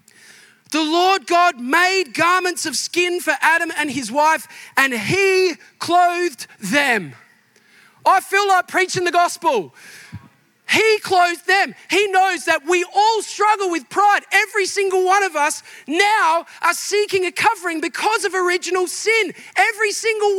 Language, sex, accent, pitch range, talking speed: English, male, Australian, 350-420 Hz, 145 wpm